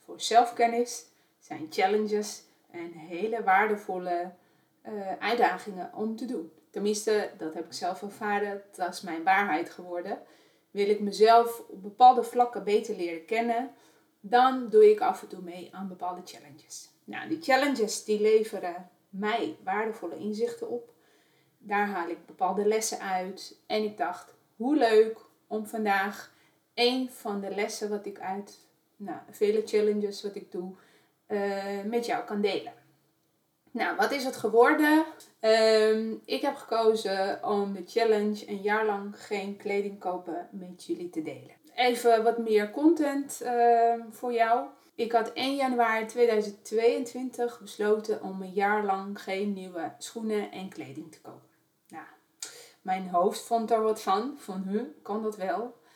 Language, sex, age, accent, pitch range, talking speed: Dutch, female, 30-49, Dutch, 195-235 Hz, 150 wpm